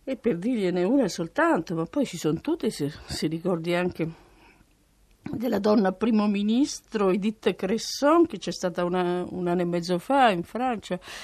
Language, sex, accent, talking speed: Italian, female, native, 165 wpm